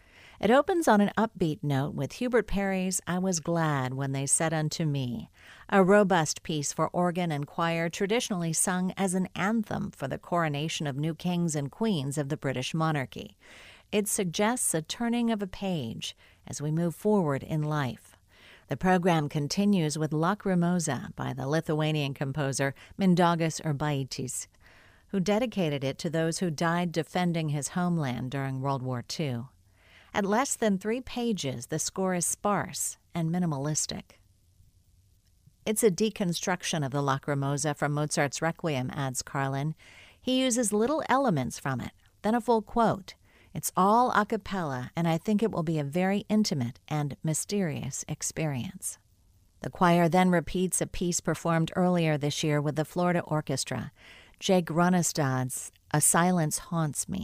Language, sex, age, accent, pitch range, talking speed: English, female, 50-69, American, 140-190 Hz, 155 wpm